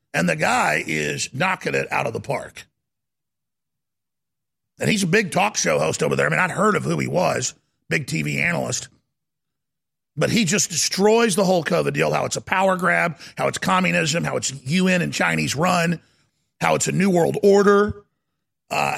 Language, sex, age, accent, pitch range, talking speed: English, male, 40-59, American, 180-225 Hz, 185 wpm